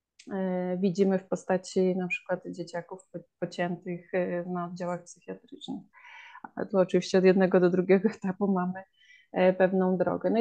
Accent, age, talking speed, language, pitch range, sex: native, 20-39, 125 wpm, Polish, 180-220 Hz, female